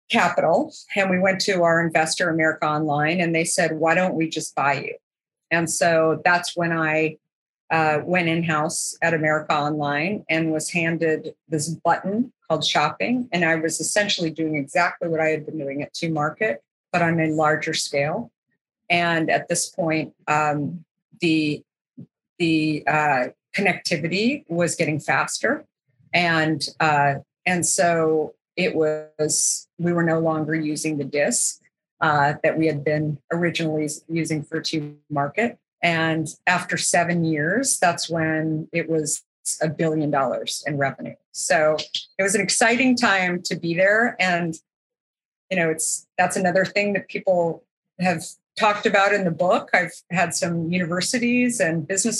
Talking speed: 155 wpm